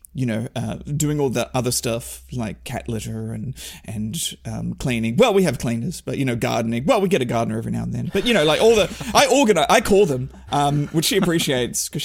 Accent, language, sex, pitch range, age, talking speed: Australian, English, male, 125-190 Hz, 40-59, 240 wpm